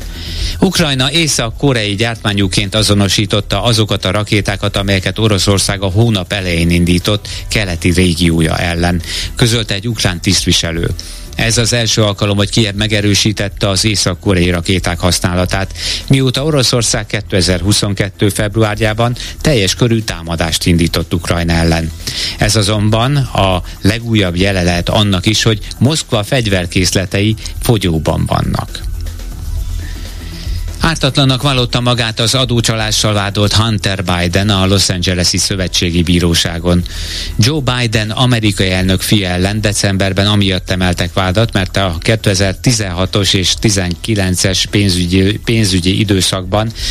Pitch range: 90-110 Hz